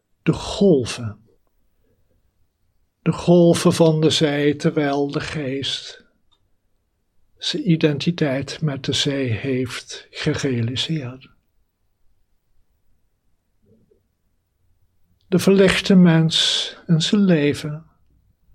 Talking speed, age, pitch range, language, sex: 75 wpm, 60-79, 105-170 Hz, Dutch, male